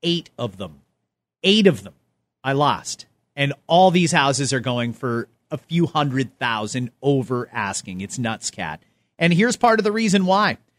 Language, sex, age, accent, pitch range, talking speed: English, male, 40-59, American, 130-200 Hz, 170 wpm